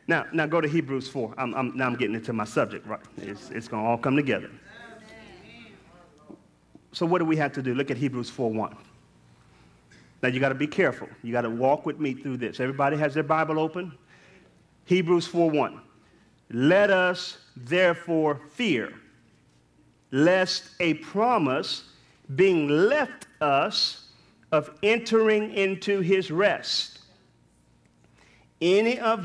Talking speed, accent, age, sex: 140 wpm, American, 40-59, male